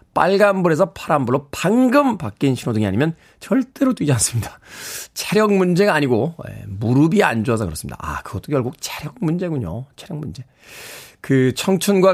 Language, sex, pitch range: Korean, male, 120-180 Hz